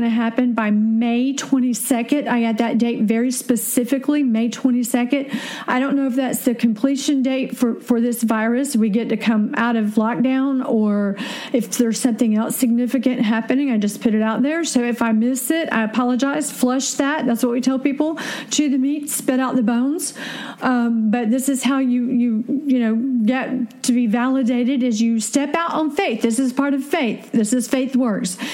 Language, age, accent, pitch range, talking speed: English, 50-69, American, 230-265 Hz, 200 wpm